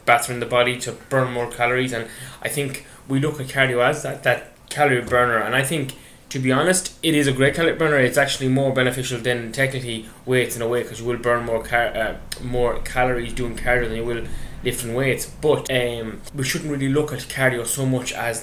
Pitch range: 120-135 Hz